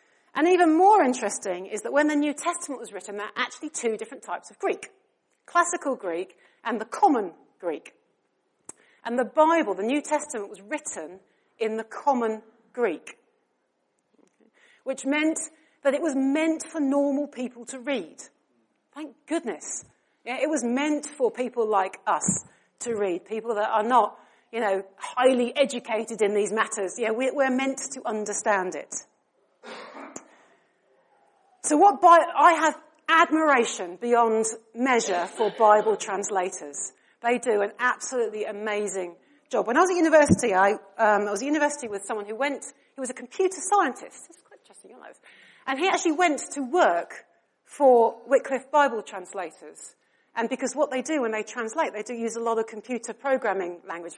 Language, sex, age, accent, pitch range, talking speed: English, female, 40-59, British, 215-295 Hz, 165 wpm